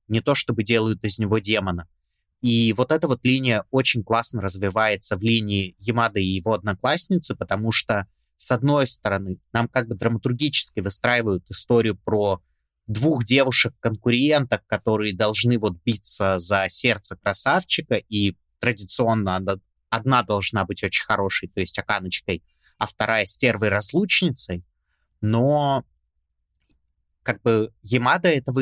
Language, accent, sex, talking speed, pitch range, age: Russian, native, male, 130 wpm, 100-130 Hz, 20-39